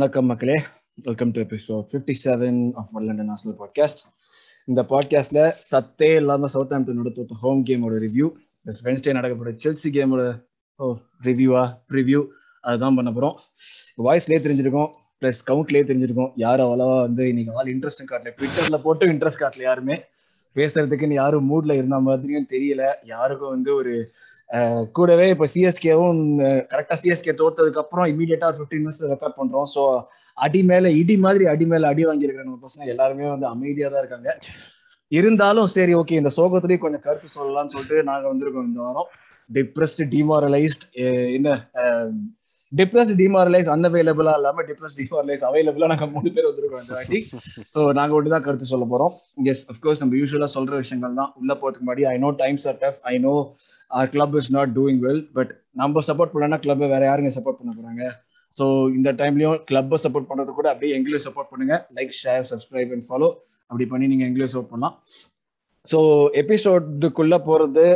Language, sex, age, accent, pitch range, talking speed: Tamil, male, 20-39, native, 130-155 Hz, 80 wpm